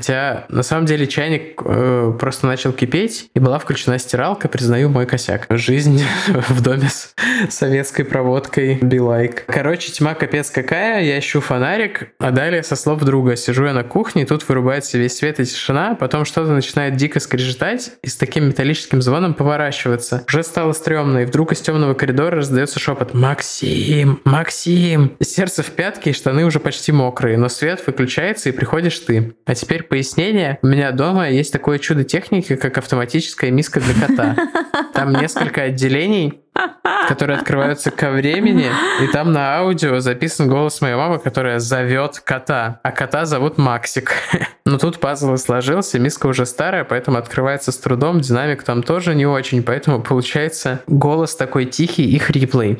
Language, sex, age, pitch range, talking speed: Russian, male, 20-39, 130-155 Hz, 165 wpm